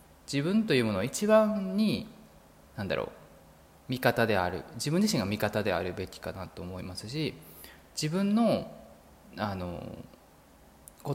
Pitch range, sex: 85-130 Hz, male